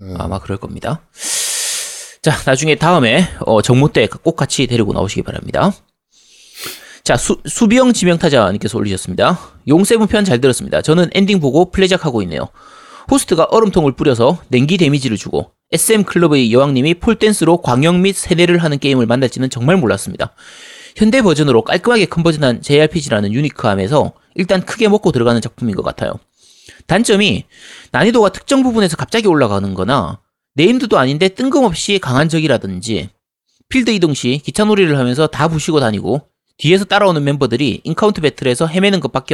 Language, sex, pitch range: Korean, male, 125-195 Hz